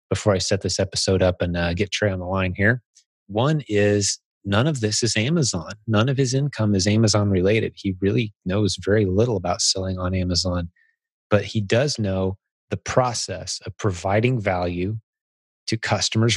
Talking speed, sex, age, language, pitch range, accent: 175 wpm, male, 30-49, English, 95-115 Hz, American